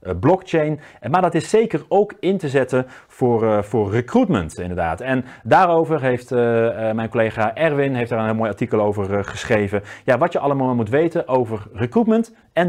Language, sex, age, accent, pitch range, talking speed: Dutch, male, 40-59, Dutch, 100-140 Hz, 185 wpm